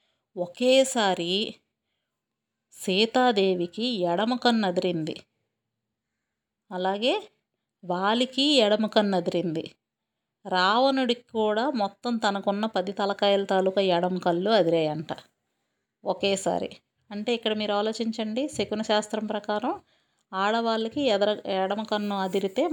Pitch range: 185-225 Hz